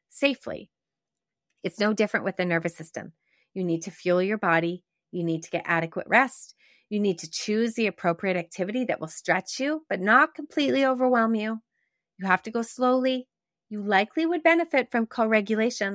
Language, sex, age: English, female, 30-49